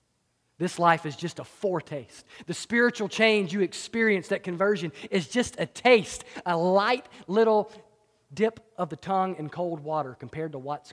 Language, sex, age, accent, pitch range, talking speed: English, male, 40-59, American, 160-225 Hz, 165 wpm